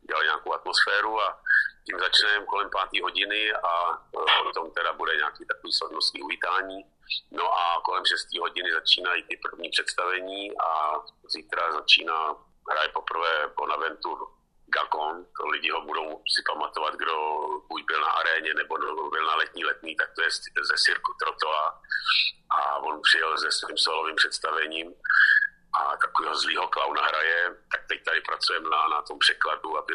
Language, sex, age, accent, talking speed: Czech, male, 50-69, native, 140 wpm